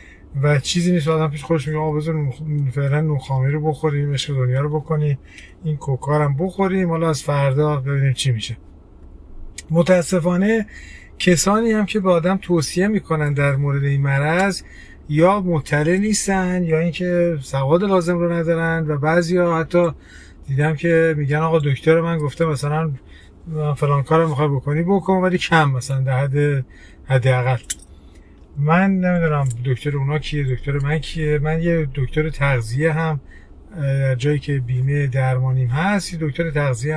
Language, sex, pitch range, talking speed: Persian, male, 130-165 Hz, 145 wpm